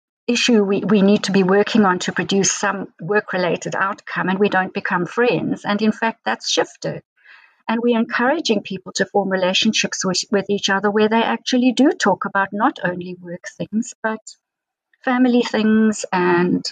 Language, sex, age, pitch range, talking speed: English, female, 50-69, 185-225 Hz, 175 wpm